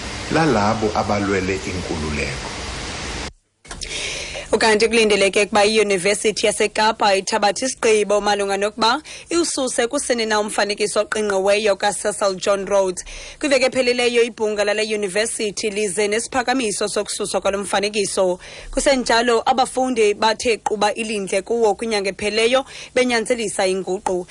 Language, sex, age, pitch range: English, female, 30-49, 190-245 Hz